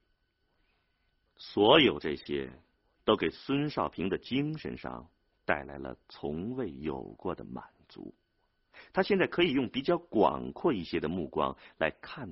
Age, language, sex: 50-69, Chinese, male